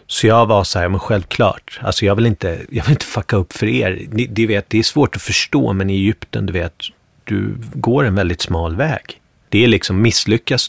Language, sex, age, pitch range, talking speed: English, male, 30-49, 95-115 Hz, 225 wpm